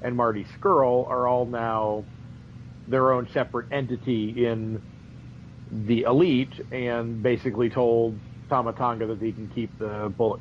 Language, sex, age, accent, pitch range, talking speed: English, male, 50-69, American, 110-130 Hz, 140 wpm